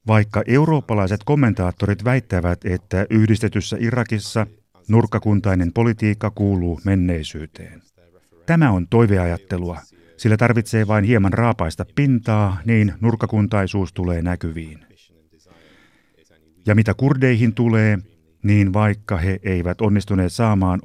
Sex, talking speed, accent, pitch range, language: male, 100 wpm, native, 90-115 Hz, Finnish